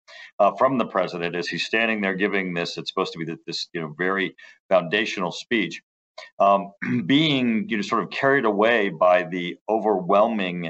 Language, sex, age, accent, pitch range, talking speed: English, male, 50-69, American, 85-110 Hz, 175 wpm